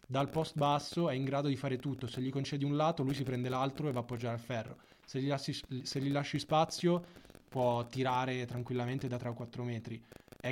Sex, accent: male, native